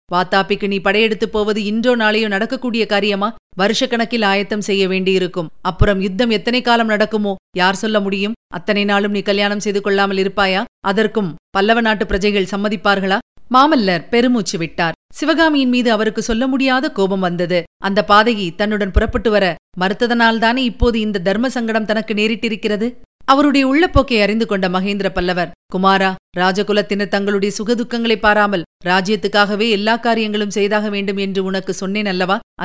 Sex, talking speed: female, 135 wpm